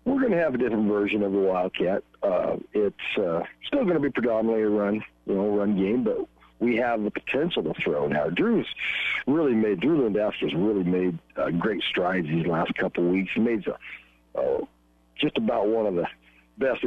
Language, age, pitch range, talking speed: English, 60-79, 95-120 Hz, 205 wpm